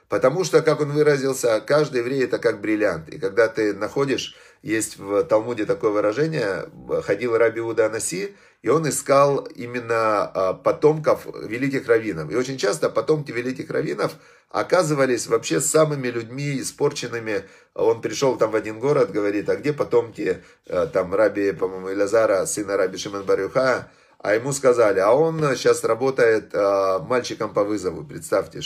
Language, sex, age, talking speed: Russian, male, 30-49, 140 wpm